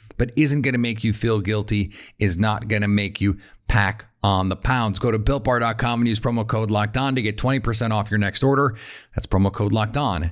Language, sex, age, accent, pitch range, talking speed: English, male, 30-49, American, 110-135 Hz, 225 wpm